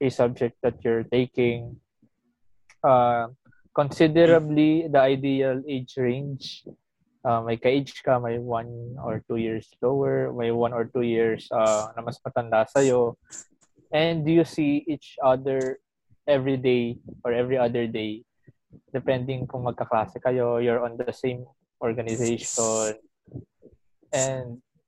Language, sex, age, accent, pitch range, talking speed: Filipino, male, 20-39, native, 120-150 Hz, 125 wpm